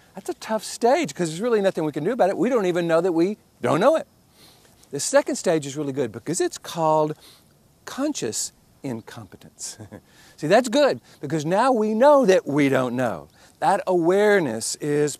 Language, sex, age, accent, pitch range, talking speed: English, male, 50-69, American, 140-215 Hz, 185 wpm